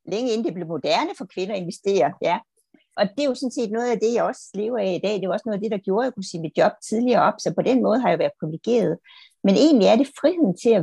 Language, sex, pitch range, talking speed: Danish, female, 175-235 Hz, 305 wpm